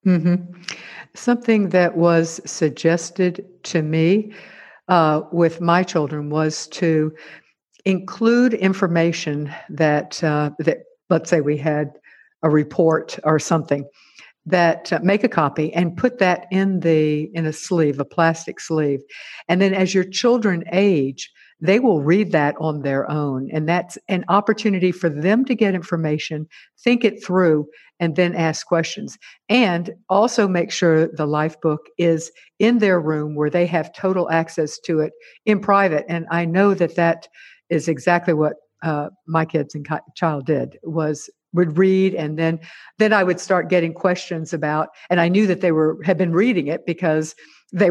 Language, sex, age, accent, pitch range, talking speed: English, female, 60-79, American, 155-185 Hz, 165 wpm